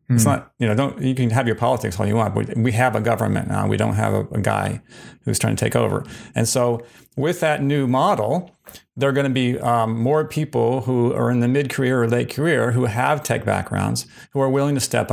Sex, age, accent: male, 40-59, American